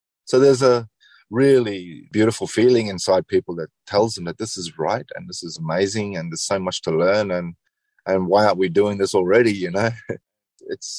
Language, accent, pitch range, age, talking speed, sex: English, Australian, 90-105 Hz, 30-49, 195 wpm, male